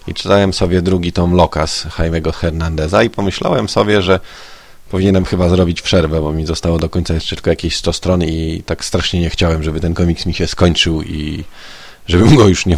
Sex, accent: male, native